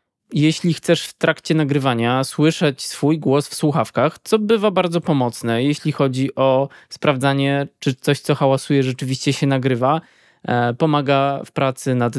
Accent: native